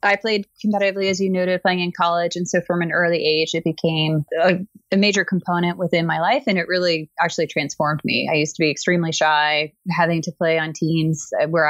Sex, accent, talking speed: female, American, 215 wpm